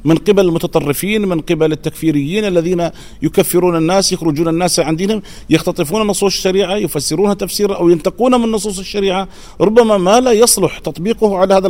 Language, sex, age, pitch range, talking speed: Arabic, male, 40-59, 165-205 Hz, 150 wpm